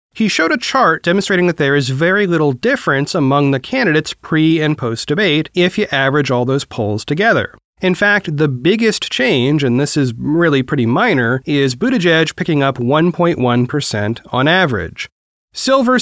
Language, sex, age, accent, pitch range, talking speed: English, male, 30-49, American, 125-180 Hz, 160 wpm